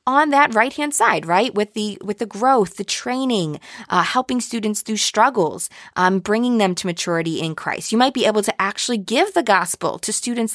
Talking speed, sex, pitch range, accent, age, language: 205 wpm, female, 185-245 Hz, American, 20-39, English